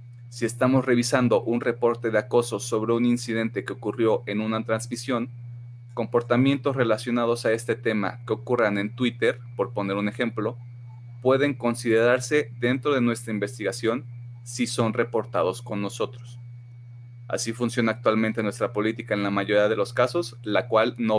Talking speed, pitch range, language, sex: 150 wpm, 110-120 Hz, Spanish, male